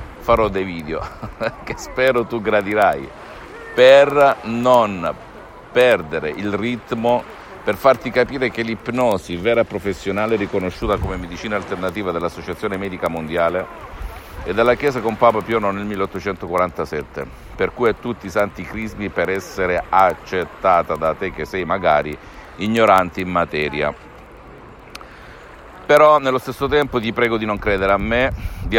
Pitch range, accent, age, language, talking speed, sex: 95-115 Hz, native, 50-69, Italian, 135 wpm, male